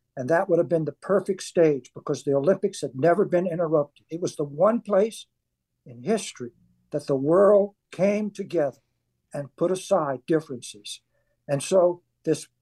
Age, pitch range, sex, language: 60-79, 135-180 Hz, male, English